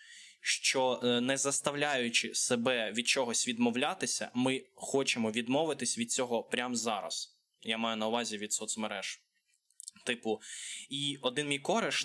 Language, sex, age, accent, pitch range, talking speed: Ukrainian, male, 20-39, native, 110-145 Hz, 125 wpm